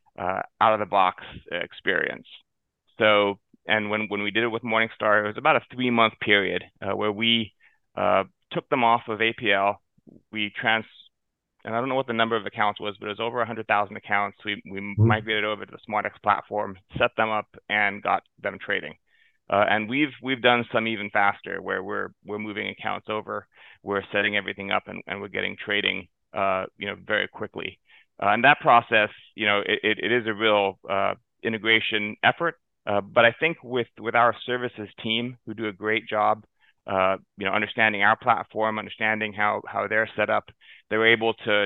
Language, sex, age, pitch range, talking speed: English, male, 30-49, 105-115 Hz, 195 wpm